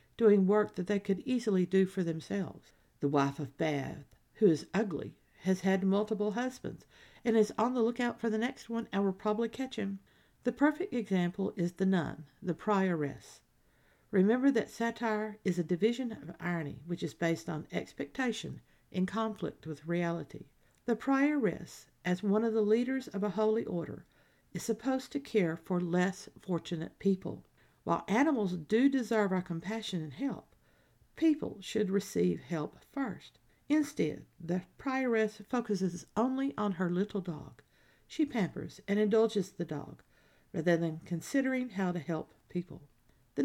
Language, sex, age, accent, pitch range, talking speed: English, female, 50-69, American, 175-230 Hz, 155 wpm